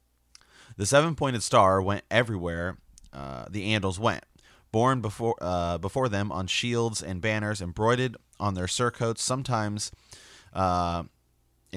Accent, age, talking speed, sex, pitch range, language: American, 30-49, 130 wpm, male, 90-115 Hz, English